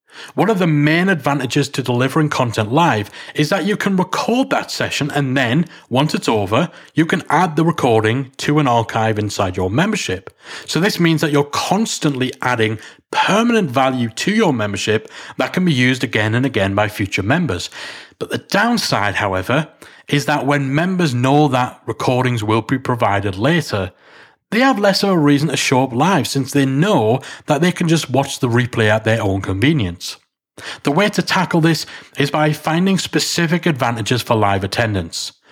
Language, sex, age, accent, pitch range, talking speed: English, male, 40-59, British, 120-170 Hz, 180 wpm